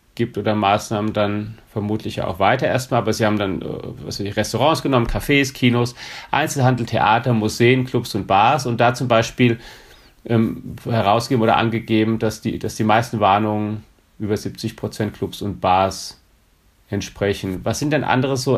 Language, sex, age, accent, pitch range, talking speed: German, male, 40-59, German, 105-125 Hz, 160 wpm